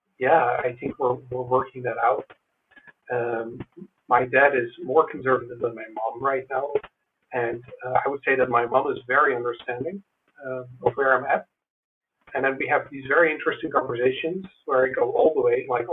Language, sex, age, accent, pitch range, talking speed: English, male, 50-69, American, 130-190 Hz, 190 wpm